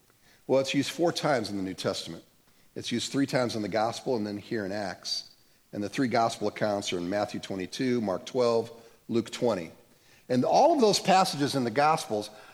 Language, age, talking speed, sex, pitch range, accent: English, 50-69, 200 wpm, male, 110-170 Hz, American